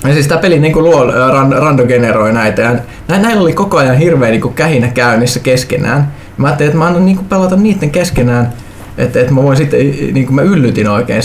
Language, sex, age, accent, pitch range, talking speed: Finnish, male, 20-39, native, 120-160 Hz, 205 wpm